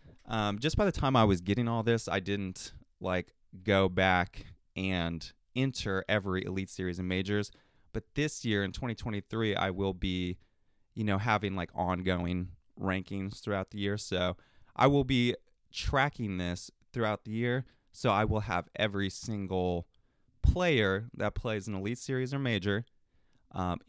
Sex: male